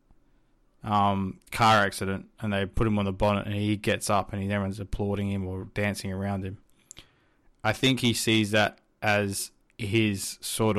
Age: 20-39